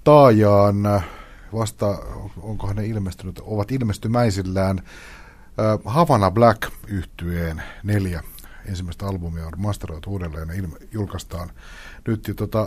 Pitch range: 90-110 Hz